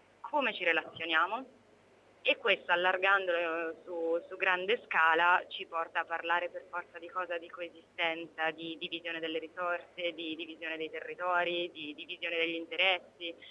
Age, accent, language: 20-39, native, Italian